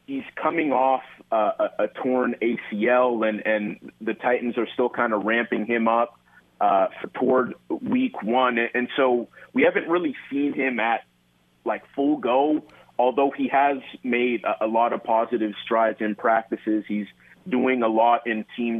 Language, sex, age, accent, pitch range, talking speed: English, male, 30-49, American, 110-125 Hz, 165 wpm